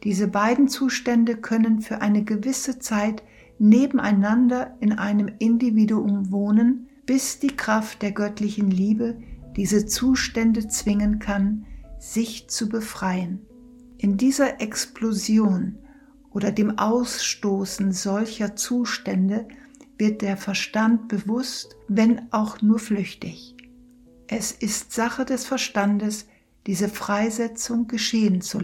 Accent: German